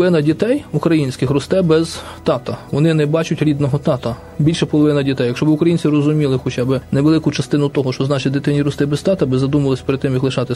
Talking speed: 200 wpm